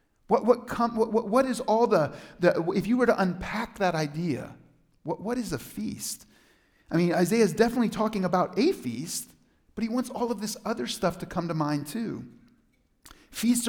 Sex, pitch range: male, 170-225 Hz